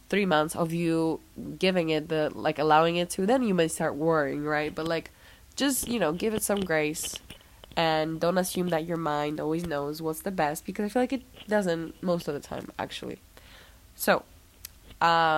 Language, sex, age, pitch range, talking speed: English, female, 20-39, 150-185 Hz, 195 wpm